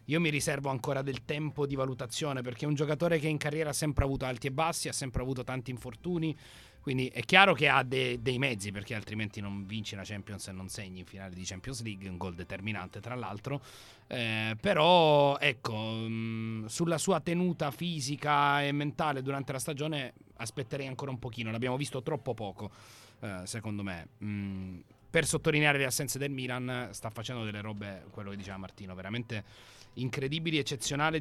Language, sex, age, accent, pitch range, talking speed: Italian, male, 30-49, native, 110-150 Hz, 175 wpm